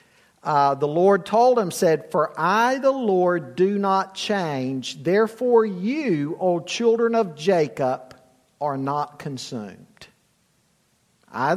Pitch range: 145-200 Hz